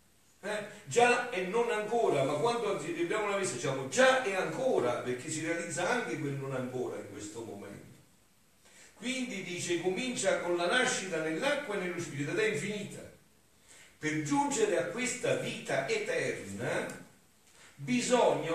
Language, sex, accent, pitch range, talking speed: Italian, male, native, 130-200 Hz, 140 wpm